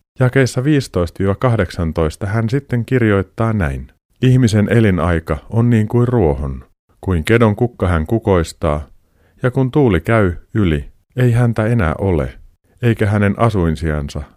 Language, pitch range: Finnish, 80-110 Hz